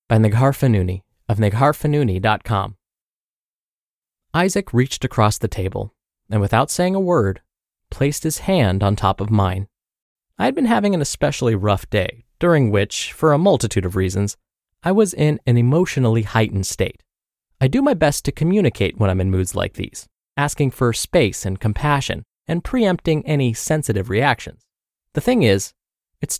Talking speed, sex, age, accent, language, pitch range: 155 wpm, male, 20-39, American, English, 105-155 Hz